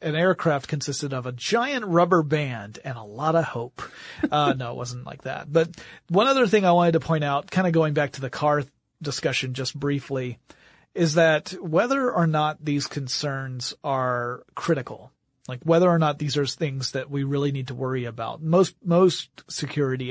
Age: 40-59